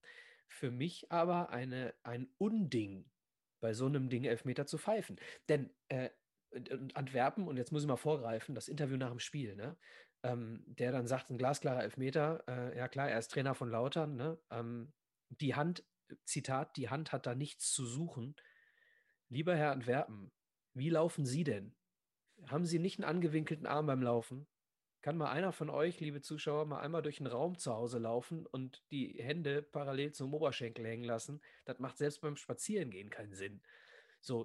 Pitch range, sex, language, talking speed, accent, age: 125-170 Hz, male, German, 175 wpm, German, 30-49